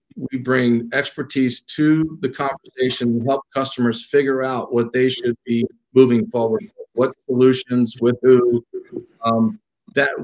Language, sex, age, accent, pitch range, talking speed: English, male, 50-69, American, 120-145 Hz, 135 wpm